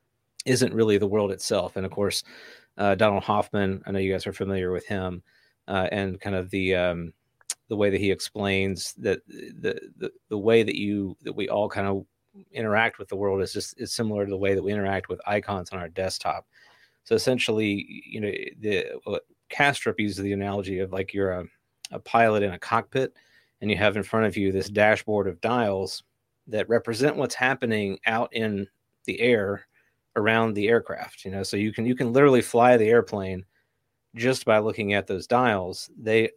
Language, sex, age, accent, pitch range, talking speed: English, male, 30-49, American, 100-120 Hz, 200 wpm